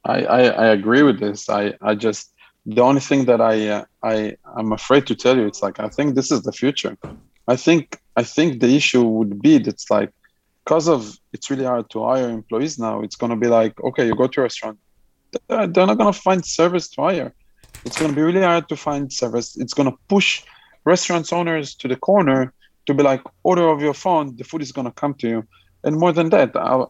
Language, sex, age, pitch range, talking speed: English, male, 20-39, 110-145 Hz, 235 wpm